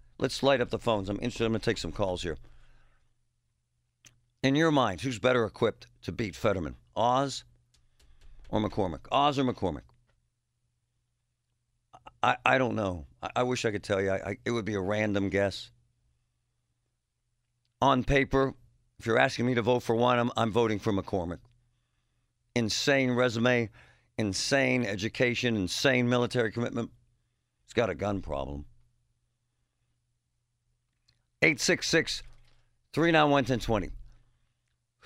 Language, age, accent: English, 50-69, American